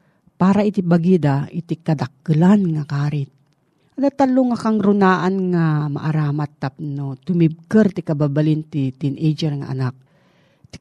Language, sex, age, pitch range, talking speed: Filipino, female, 40-59, 150-195 Hz, 130 wpm